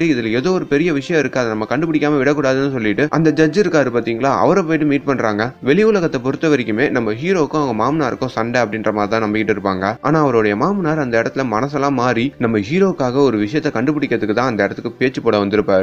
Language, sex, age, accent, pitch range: Tamil, male, 20-39, native, 115-145 Hz